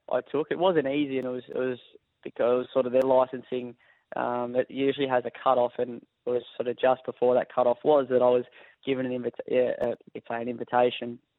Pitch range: 120-125 Hz